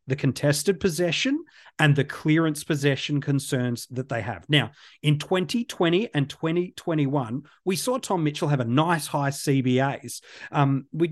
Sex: male